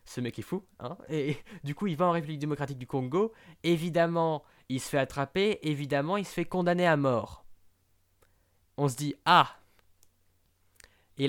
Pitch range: 120-155 Hz